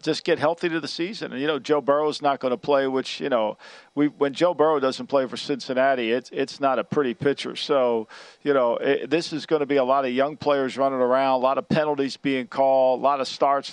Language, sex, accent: English, male, American